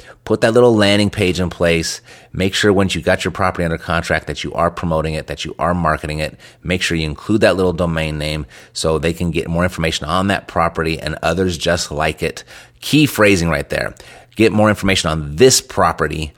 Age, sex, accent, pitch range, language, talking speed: 30-49, male, American, 80-95 Hz, English, 215 wpm